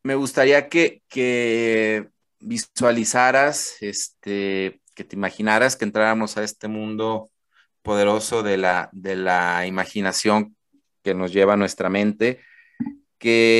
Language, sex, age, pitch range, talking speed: Spanish, male, 30-49, 105-125 Hz, 120 wpm